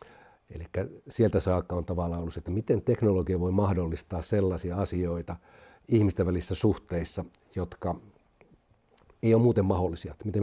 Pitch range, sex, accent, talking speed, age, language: 85-100 Hz, male, native, 120 wpm, 60-79, Finnish